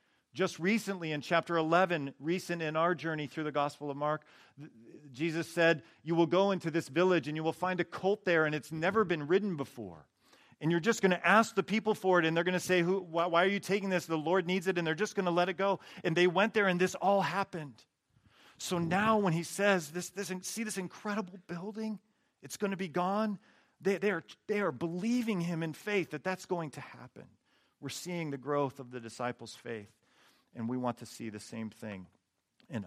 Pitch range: 135-180 Hz